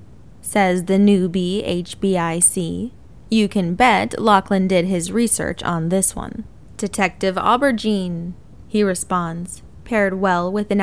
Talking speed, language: 120 wpm, English